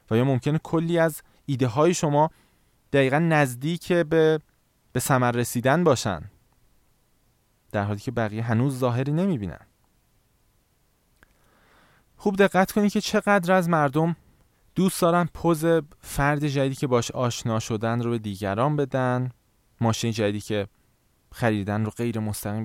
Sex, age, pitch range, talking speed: male, 20-39, 110-155 Hz, 125 wpm